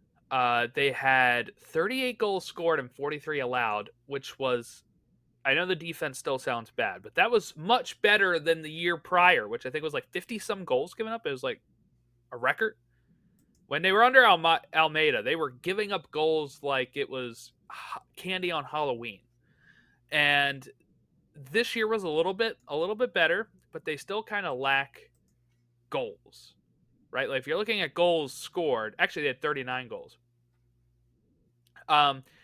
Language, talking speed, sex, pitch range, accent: English, 165 wpm, male, 130-215 Hz, American